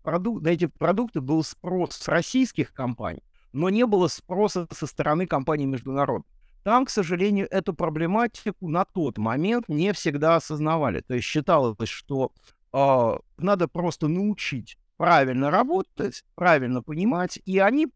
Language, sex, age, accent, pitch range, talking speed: Russian, male, 60-79, native, 125-180 Hz, 135 wpm